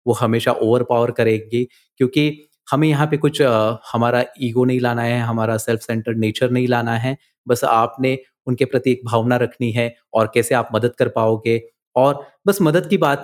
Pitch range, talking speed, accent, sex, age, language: 110-125 Hz, 190 wpm, native, male, 30-49, Hindi